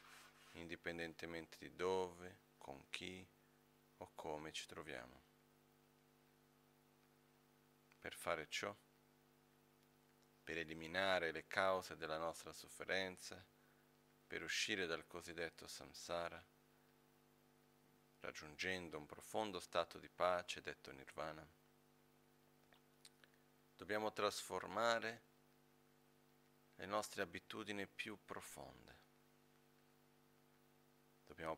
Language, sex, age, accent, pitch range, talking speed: Italian, male, 40-59, native, 85-95 Hz, 75 wpm